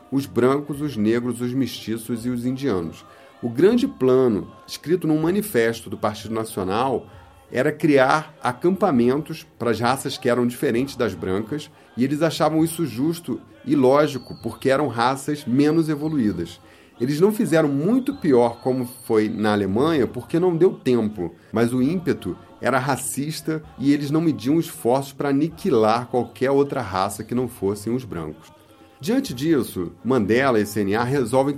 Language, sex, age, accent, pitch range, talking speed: Portuguese, male, 40-59, Brazilian, 105-145 Hz, 150 wpm